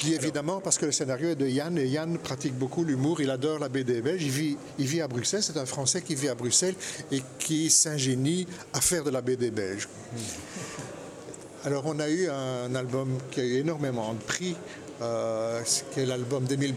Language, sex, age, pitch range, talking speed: French, male, 60-79, 125-155 Hz, 210 wpm